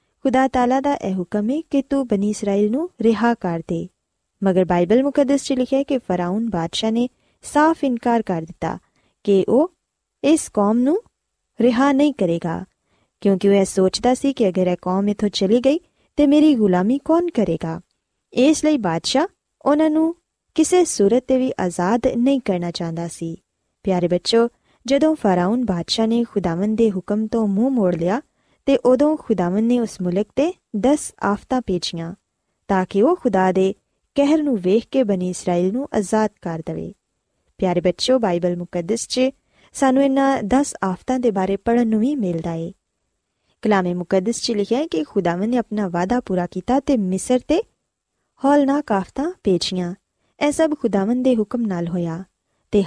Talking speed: 165 wpm